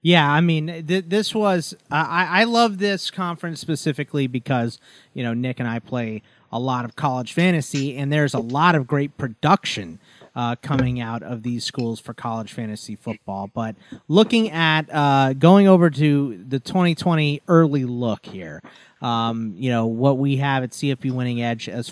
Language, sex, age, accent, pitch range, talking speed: English, male, 30-49, American, 120-155 Hz, 175 wpm